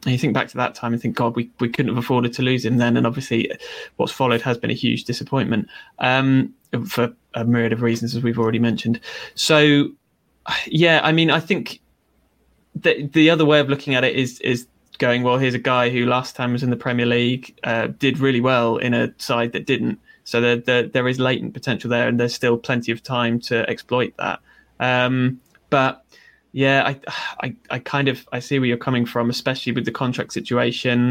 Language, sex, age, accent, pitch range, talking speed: English, male, 20-39, British, 120-135 Hz, 215 wpm